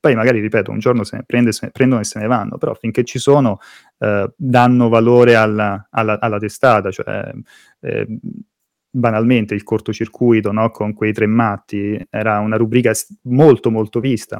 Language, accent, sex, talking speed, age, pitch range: Italian, native, male, 170 wpm, 20-39, 110-125 Hz